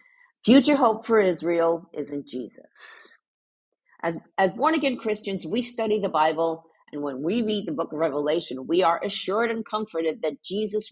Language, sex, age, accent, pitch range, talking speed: English, female, 50-69, American, 160-225 Hz, 165 wpm